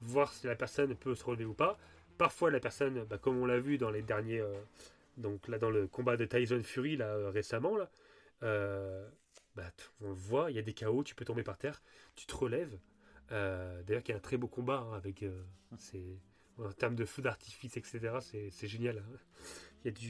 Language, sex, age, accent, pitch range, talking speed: French, male, 30-49, French, 110-145 Hz, 235 wpm